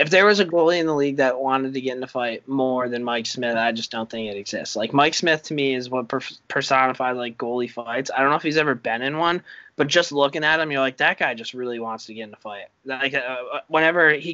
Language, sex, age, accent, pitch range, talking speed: English, male, 20-39, American, 120-150 Hz, 280 wpm